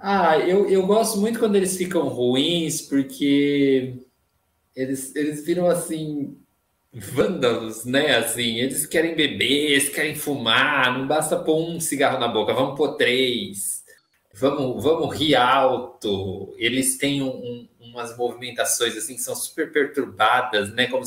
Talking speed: 135 wpm